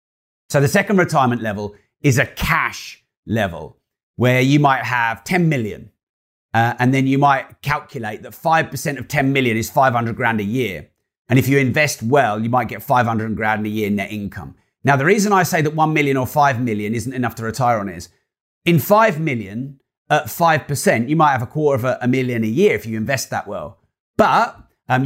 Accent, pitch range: British, 115-145 Hz